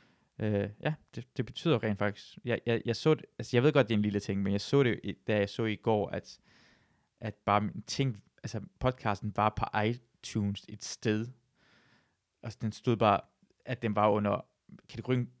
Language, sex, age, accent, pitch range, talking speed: Danish, male, 20-39, native, 100-120 Hz, 190 wpm